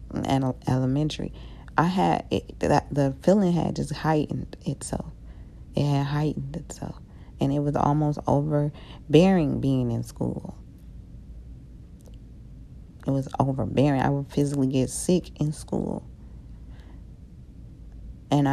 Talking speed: 110 wpm